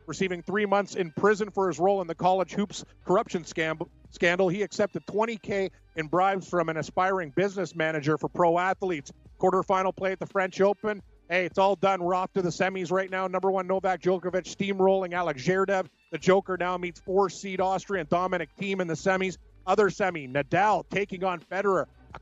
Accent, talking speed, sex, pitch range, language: American, 190 wpm, male, 170-190 Hz, English